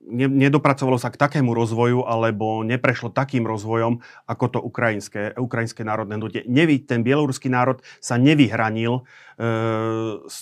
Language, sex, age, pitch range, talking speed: Slovak, male, 40-59, 110-125 Hz, 115 wpm